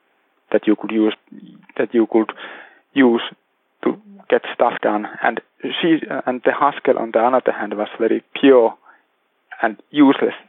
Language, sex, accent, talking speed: English, male, Finnish, 150 wpm